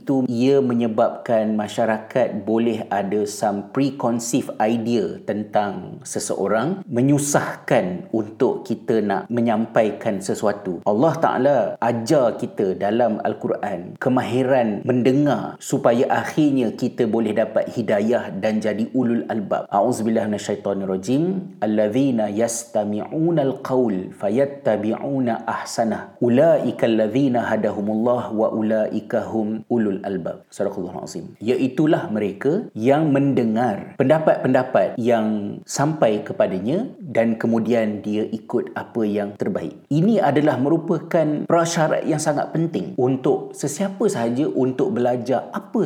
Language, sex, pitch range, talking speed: Malay, male, 110-140 Hz, 100 wpm